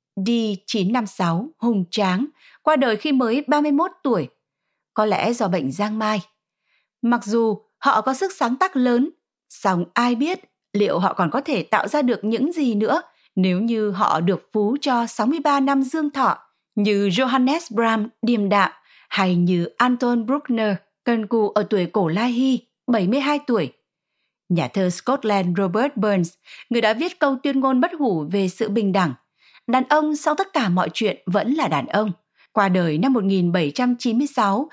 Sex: female